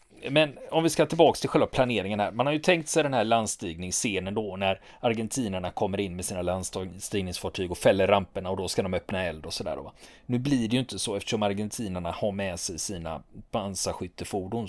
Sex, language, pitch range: male, Swedish, 100-130 Hz